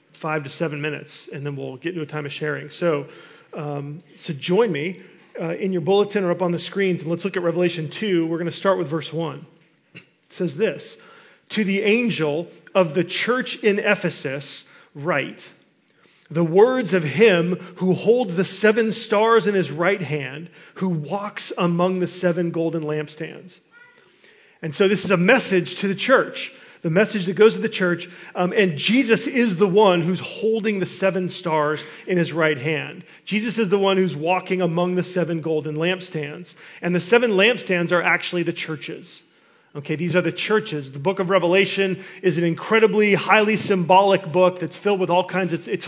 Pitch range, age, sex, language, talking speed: 165-195 Hz, 40-59, male, English, 190 wpm